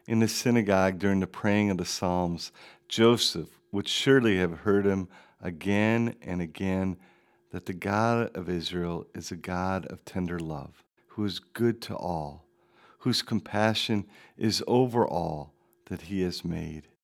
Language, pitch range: English, 90-110 Hz